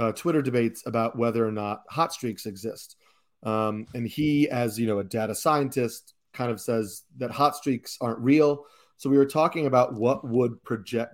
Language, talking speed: English, 190 wpm